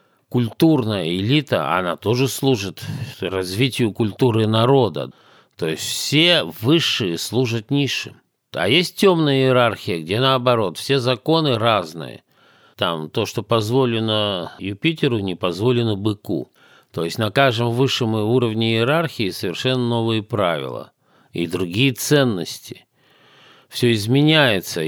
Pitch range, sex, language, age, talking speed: 100-130 Hz, male, Russian, 50-69, 110 wpm